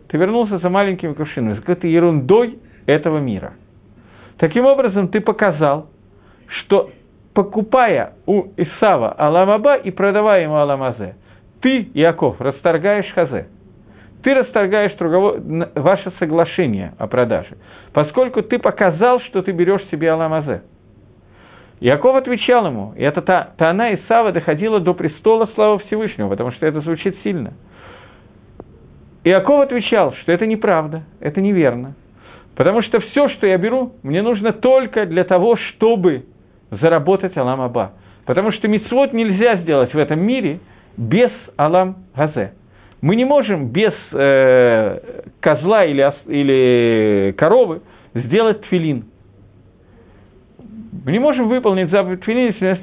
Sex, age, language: male, 50-69, Russian